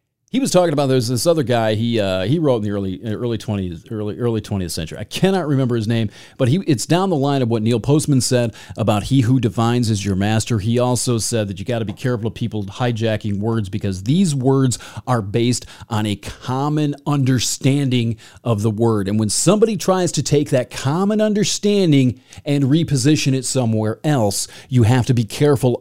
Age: 40-59